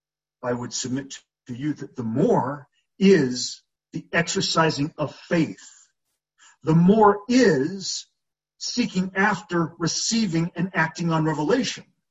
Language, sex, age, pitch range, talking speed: English, male, 50-69, 155-190 Hz, 115 wpm